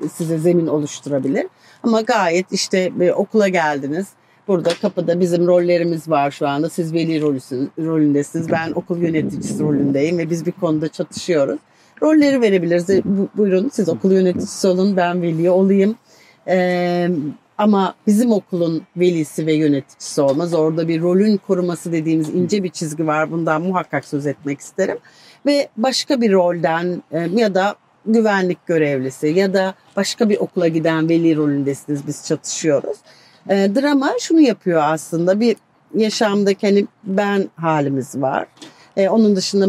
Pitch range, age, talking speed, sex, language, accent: 155-195 Hz, 50-69, 140 wpm, female, Turkish, native